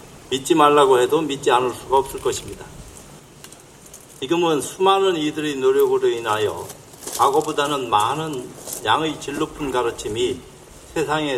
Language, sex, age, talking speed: English, male, 50-69, 105 wpm